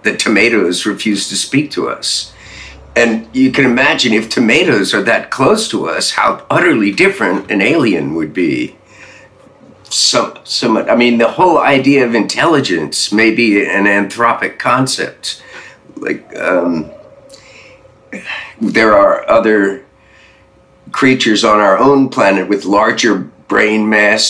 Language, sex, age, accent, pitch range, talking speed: English, male, 50-69, American, 100-130 Hz, 130 wpm